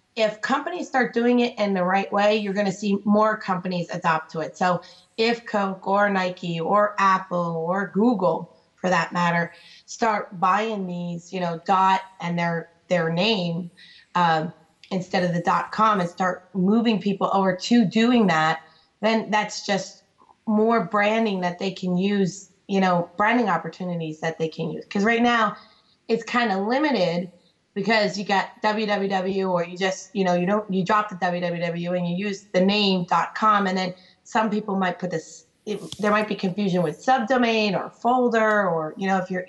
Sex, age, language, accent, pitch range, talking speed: female, 20-39, English, American, 180-215 Hz, 180 wpm